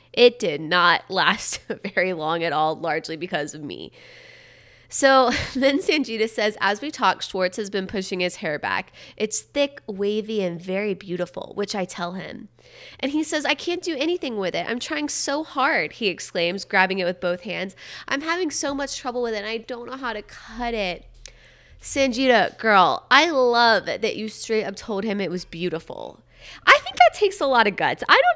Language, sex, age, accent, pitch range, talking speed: English, female, 20-39, American, 180-265 Hz, 200 wpm